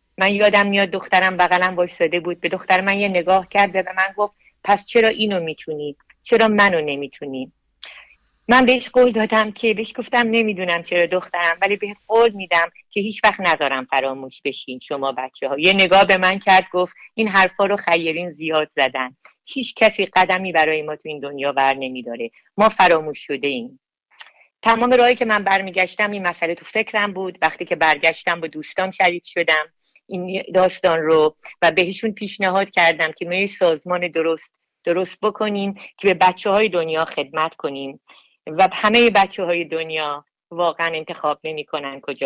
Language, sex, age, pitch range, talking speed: Persian, female, 50-69, 155-200 Hz, 170 wpm